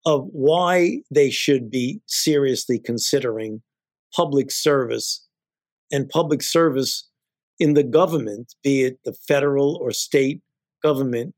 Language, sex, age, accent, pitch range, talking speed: English, male, 50-69, American, 125-160 Hz, 115 wpm